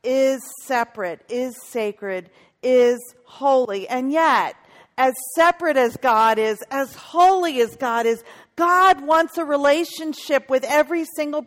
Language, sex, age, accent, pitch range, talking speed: English, female, 50-69, American, 250-320 Hz, 130 wpm